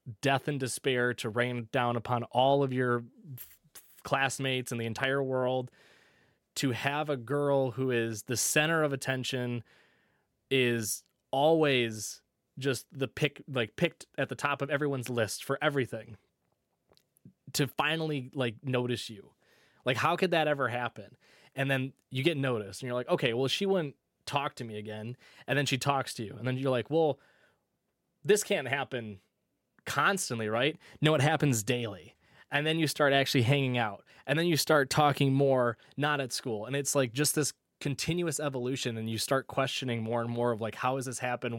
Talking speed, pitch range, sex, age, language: 175 wpm, 120-140 Hz, male, 20-39, English